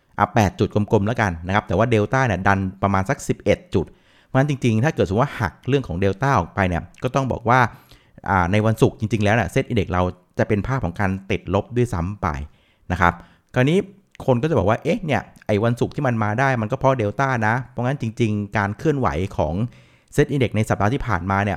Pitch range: 95-130 Hz